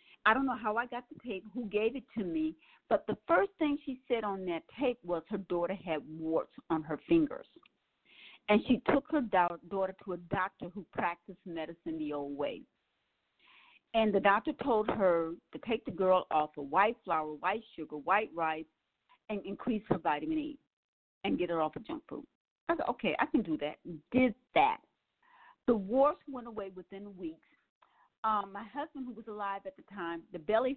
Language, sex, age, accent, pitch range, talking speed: English, female, 50-69, American, 180-260 Hz, 195 wpm